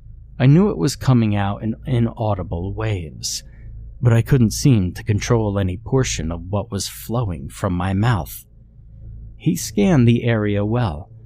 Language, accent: English, American